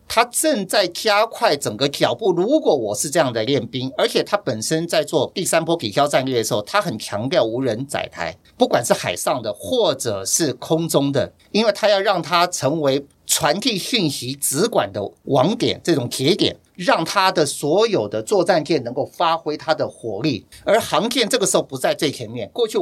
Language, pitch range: Chinese, 140-215 Hz